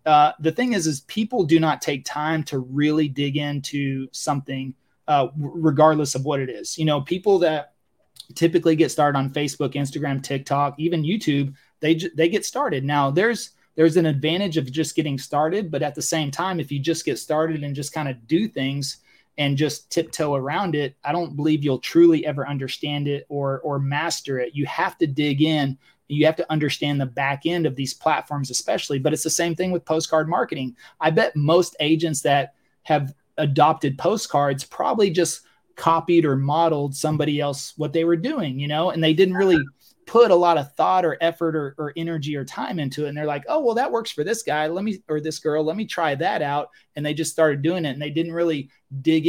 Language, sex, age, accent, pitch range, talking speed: English, male, 30-49, American, 145-165 Hz, 215 wpm